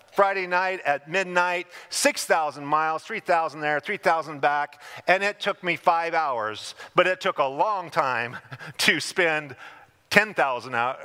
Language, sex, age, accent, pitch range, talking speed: English, male, 40-59, American, 140-200 Hz, 135 wpm